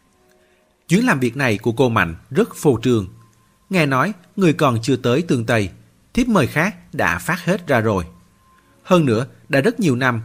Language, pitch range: Vietnamese, 105-155 Hz